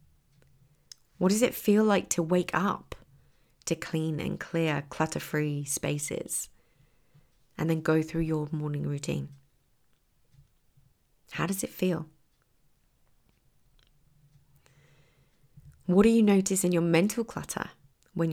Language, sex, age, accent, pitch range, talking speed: English, female, 30-49, British, 145-180 Hz, 110 wpm